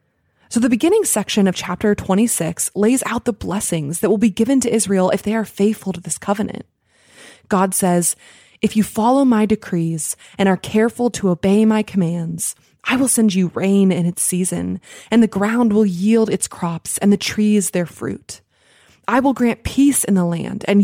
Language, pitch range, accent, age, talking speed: English, 185-225 Hz, American, 20-39, 190 wpm